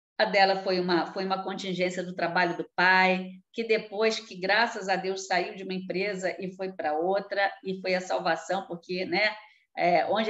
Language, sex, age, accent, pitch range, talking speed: Portuguese, female, 50-69, Brazilian, 180-220 Hz, 175 wpm